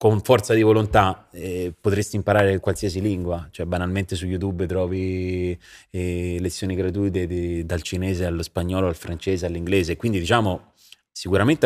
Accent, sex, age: native, male, 30-49